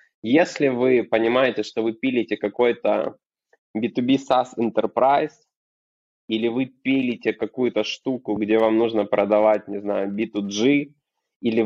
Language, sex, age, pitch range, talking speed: Ukrainian, male, 20-39, 105-125 Hz, 120 wpm